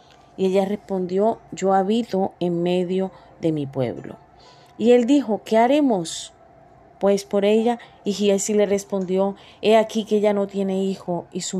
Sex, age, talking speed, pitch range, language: female, 30-49, 160 wpm, 190-230 Hz, Spanish